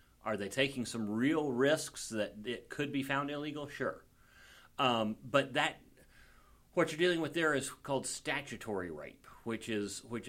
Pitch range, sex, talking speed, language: 100-135 Hz, male, 165 wpm, English